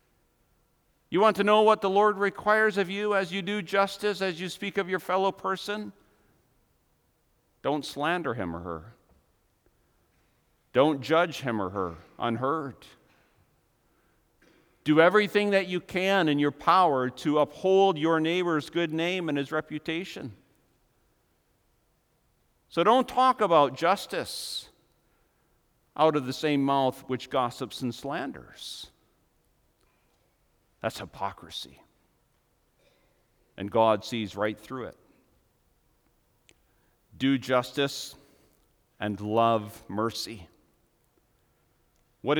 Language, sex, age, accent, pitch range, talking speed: English, male, 50-69, American, 120-180 Hz, 110 wpm